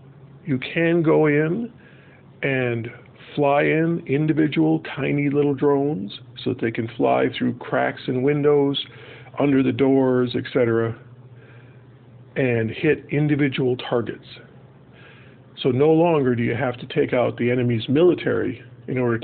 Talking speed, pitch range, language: 135 wpm, 125-140 Hz, English